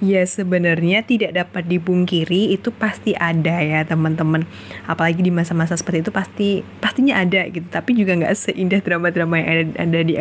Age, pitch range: 20-39, 170-205 Hz